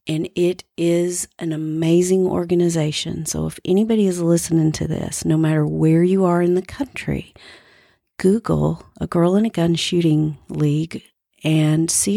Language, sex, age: English, female, 40-59